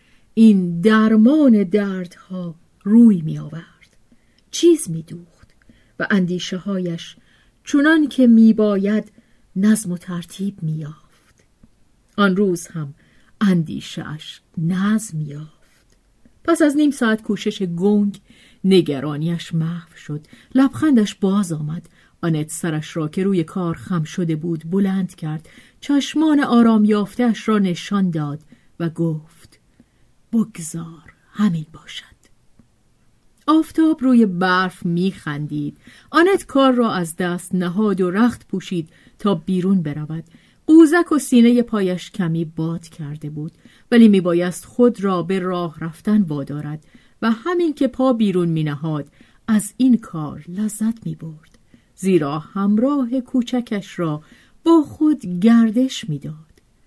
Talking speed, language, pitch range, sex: 120 wpm, Persian, 165-225 Hz, female